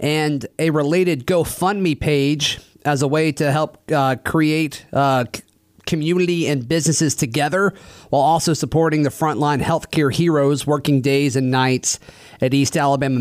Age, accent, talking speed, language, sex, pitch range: 30-49, American, 140 wpm, English, male, 130-155 Hz